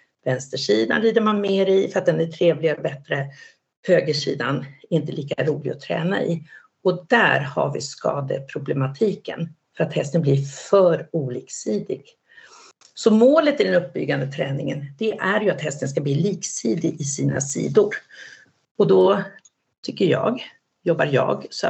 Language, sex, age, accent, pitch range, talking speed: Swedish, female, 50-69, native, 150-210 Hz, 150 wpm